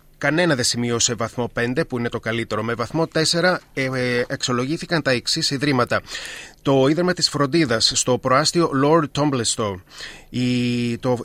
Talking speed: 150 wpm